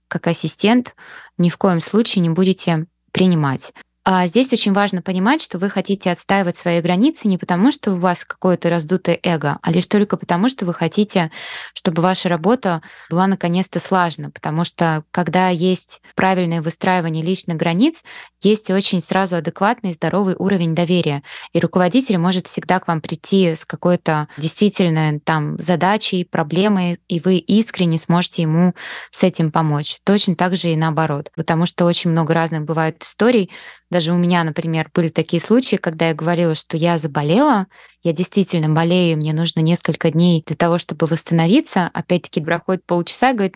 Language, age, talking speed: Russian, 20-39, 160 wpm